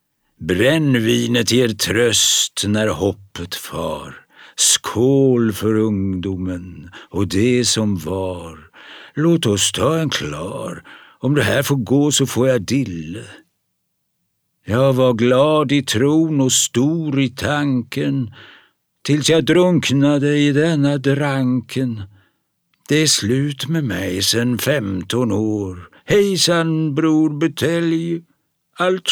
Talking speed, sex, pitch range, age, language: 110 wpm, male, 105-140 Hz, 60-79, Swedish